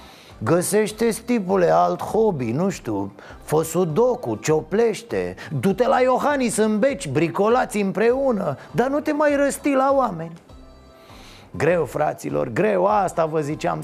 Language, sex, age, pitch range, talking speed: Romanian, male, 30-49, 135-185 Hz, 125 wpm